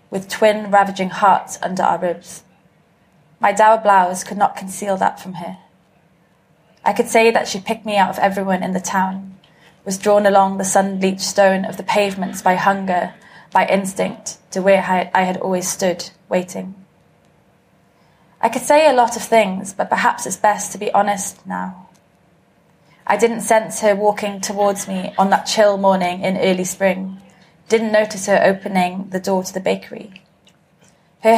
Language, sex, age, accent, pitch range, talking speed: English, female, 20-39, British, 180-205 Hz, 170 wpm